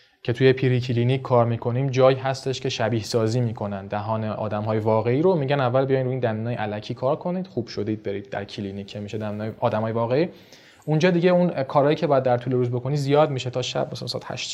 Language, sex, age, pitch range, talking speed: Persian, male, 20-39, 120-160 Hz, 215 wpm